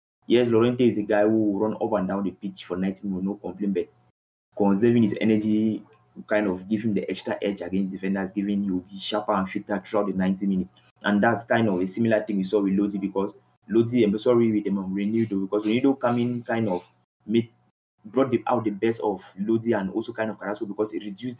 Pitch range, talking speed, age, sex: 100-115 Hz, 220 wpm, 20-39, male